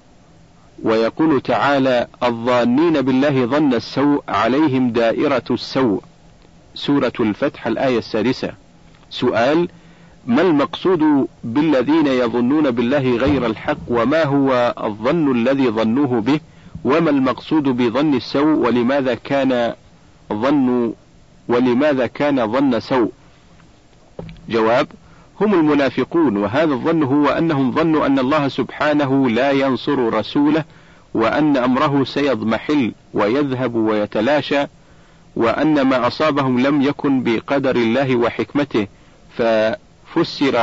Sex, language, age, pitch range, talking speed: male, Arabic, 50-69, 120-150 Hz, 95 wpm